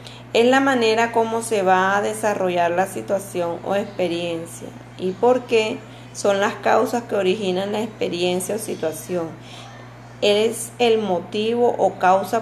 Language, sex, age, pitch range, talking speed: Spanish, female, 40-59, 185-225 Hz, 140 wpm